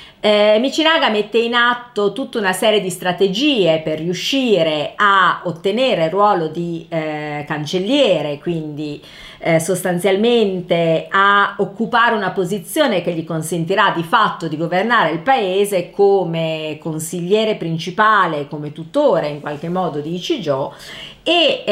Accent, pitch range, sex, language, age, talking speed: native, 165-215 Hz, female, Italian, 40-59, 130 wpm